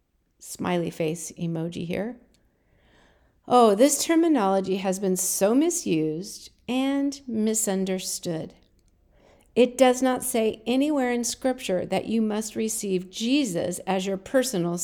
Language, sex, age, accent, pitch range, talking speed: English, female, 50-69, American, 185-265 Hz, 115 wpm